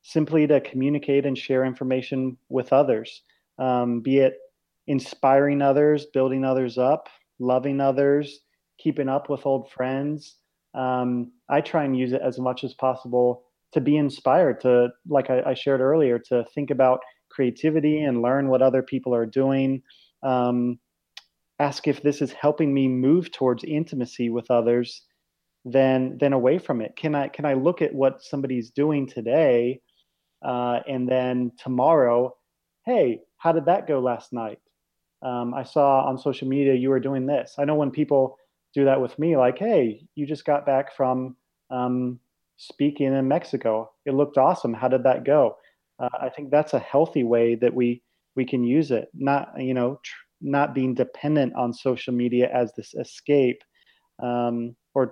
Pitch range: 125-140 Hz